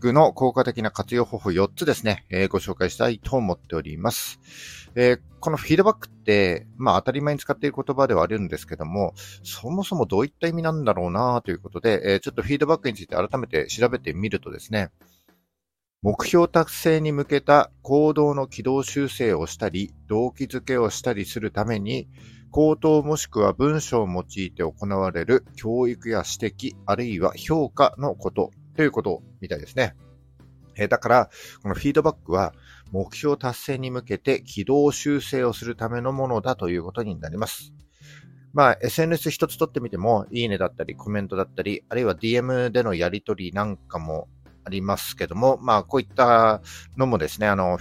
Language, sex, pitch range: Japanese, male, 95-135 Hz